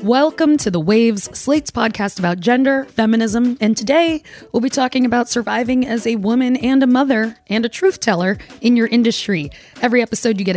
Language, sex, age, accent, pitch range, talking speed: English, female, 20-39, American, 185-250 Hz, 185 wpm